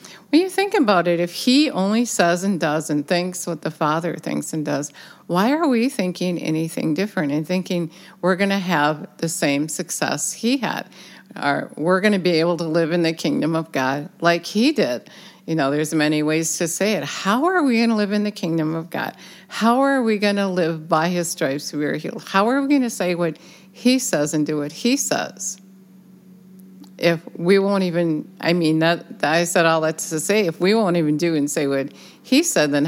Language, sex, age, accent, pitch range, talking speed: English, female, 50-69, American, 155-190 Hz, 220 wpm